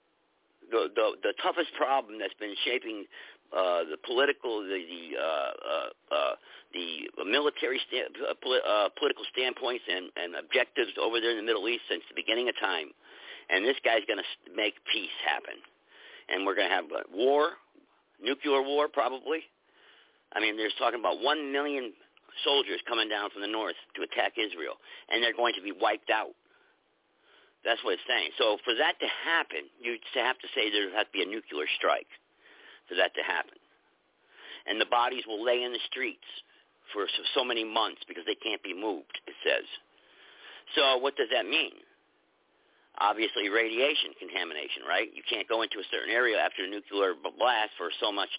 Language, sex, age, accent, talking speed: English, male, 50-69, American, 180 wpm